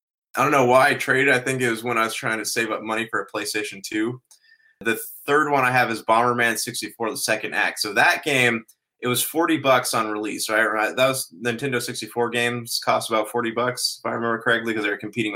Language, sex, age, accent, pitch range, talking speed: English, male, 20-39, American, 110-125 Hz, 235 wpm